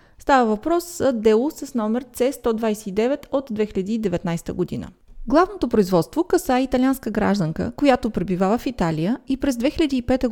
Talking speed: 120 wpm